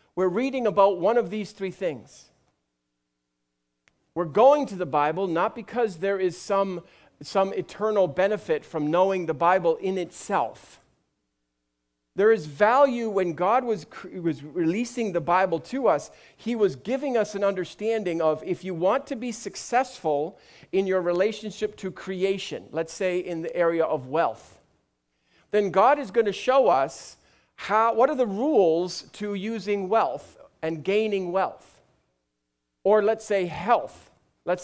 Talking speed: 150 wpm